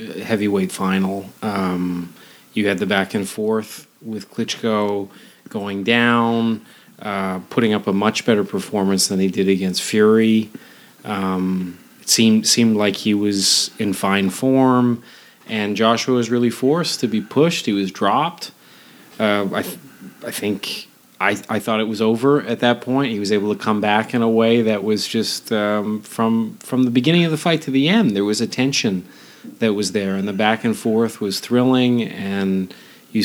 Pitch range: 100-120 Hz